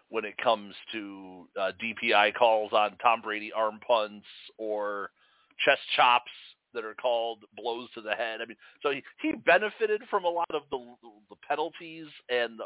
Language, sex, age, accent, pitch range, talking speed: English, male, 40-59, American, 110-150 Hz, 175 wpm